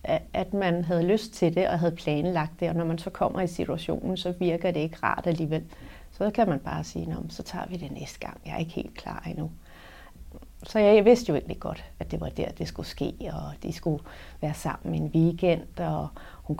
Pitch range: 160-200 Hz